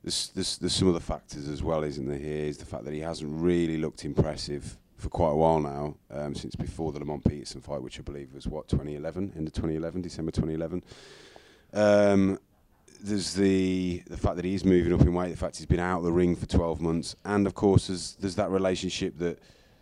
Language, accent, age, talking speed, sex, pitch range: English, British, 30-49, 220 wpm, male, 75-95 Hz